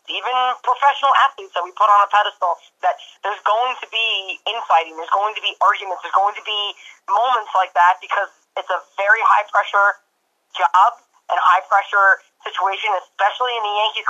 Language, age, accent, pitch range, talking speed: English, 30-49, American, 180-215 Hz, 165 wpm